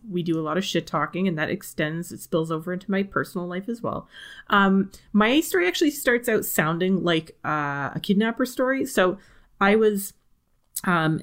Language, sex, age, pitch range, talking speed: English, female, 30-49, 155-190 Hz, 185 wpm